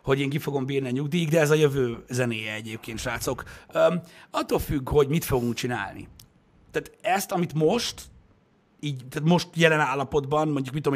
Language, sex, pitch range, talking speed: Hungarian, male, 125-150 Hz, 175 wpm